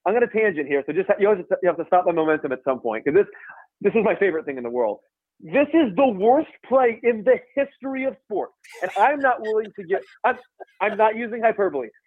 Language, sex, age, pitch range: English, male, 30-49, 185-310 Hz